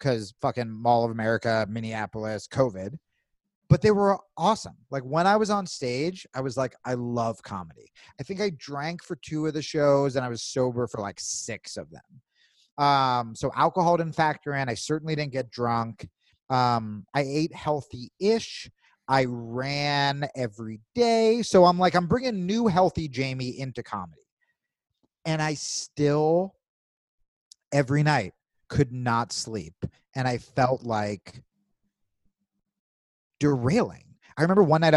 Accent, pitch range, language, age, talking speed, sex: American, 110-155 Hz, English, 30-49, 150 wpm, male